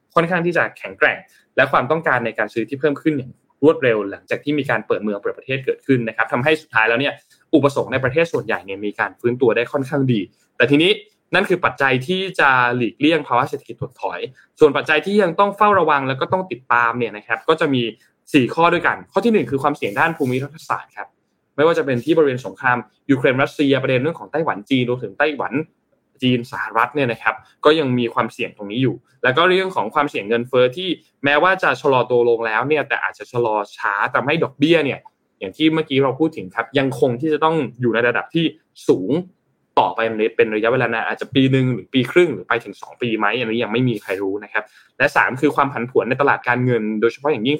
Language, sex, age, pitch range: Thai, male, 20-39, 120-160 Hz